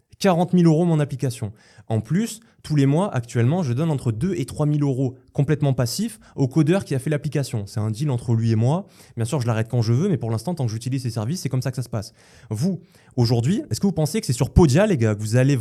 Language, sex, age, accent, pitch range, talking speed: French, male, 20-39, French, 120-170 Hz, 275 wpm